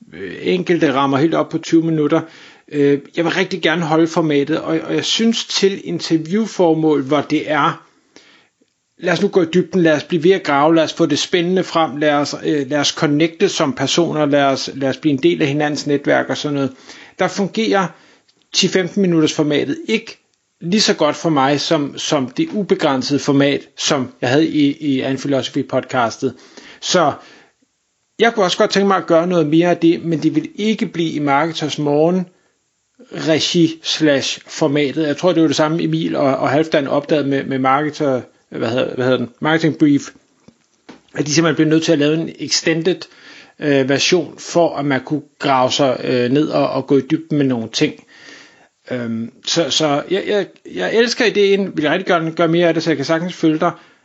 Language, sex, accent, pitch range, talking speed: Danish, male, native, 145-175 Hz, 190 wpm